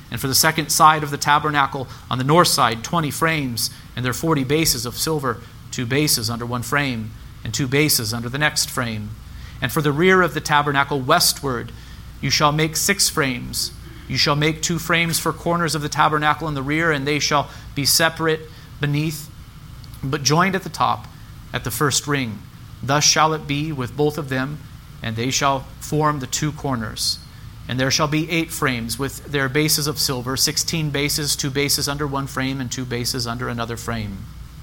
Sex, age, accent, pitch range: male, 40-59, American, 125-150 Hz